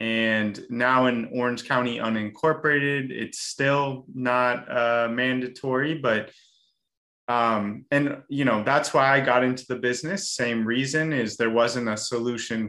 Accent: American